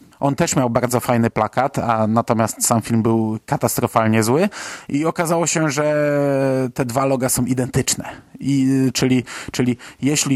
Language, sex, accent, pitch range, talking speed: Polish, male, native, 120-145 Hz, 145 wpm